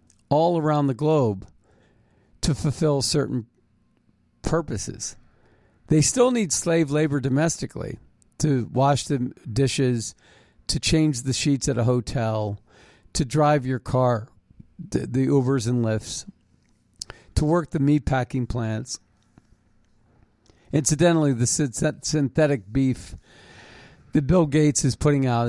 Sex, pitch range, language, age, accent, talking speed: male, 110-150 Hz, English, 50-69, American, 120 wpm